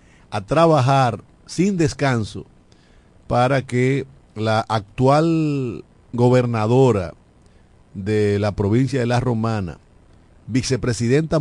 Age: 50-69